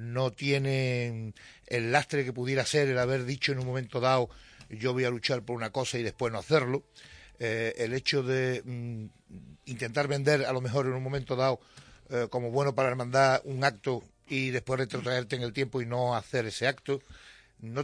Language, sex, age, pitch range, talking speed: Spanish, male, 60-79, 115-135 Hz, 200 wpm